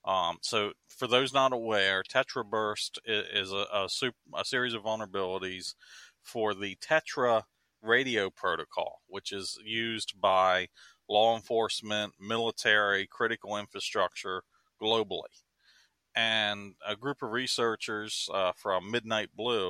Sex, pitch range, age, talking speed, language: male, 100-115 Hz, 40-59, 115 wpm, English